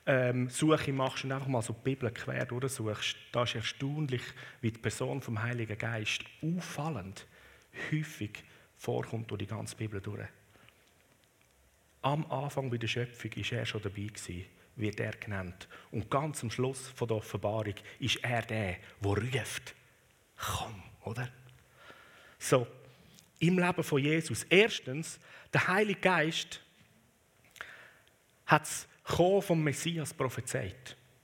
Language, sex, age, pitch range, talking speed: German, male, 40-59, 110-155 Hz, 135 wpm